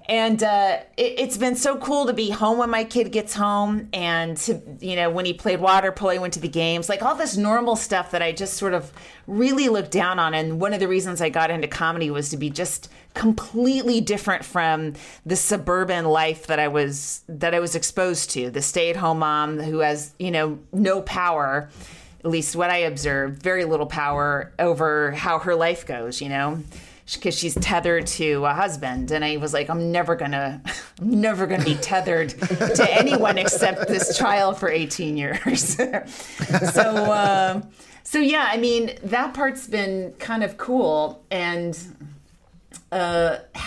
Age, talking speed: 30-49, 185 wpm